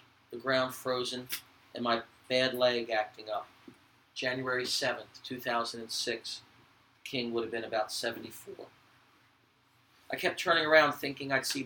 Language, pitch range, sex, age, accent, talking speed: English, 120-140 Hz, male, 40-59, American, 135 wpm